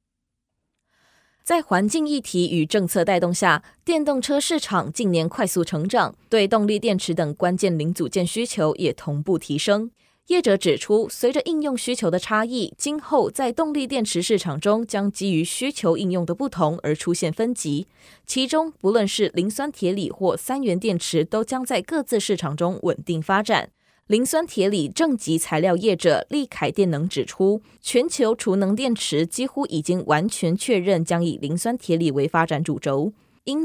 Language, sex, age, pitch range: Chinese, female, 20-39, 170-235 Hz